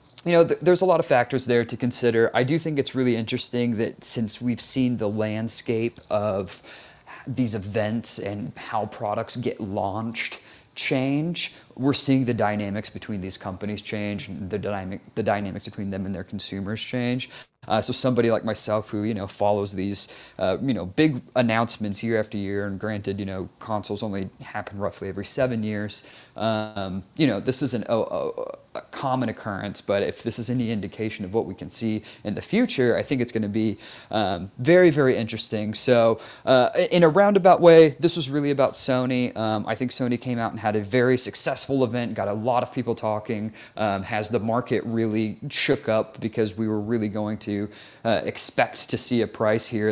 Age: 30-49